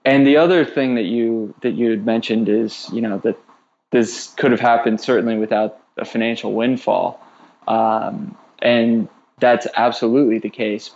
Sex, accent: male, American